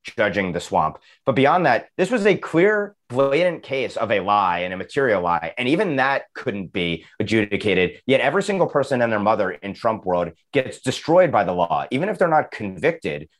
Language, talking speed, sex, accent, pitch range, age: English, 200 wpm, male, American, 100-130 Hz, 30-49